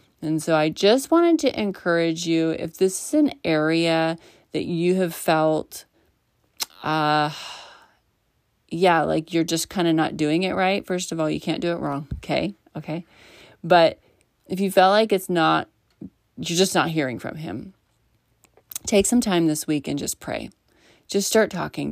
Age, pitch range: 30-49, 155-185 Hz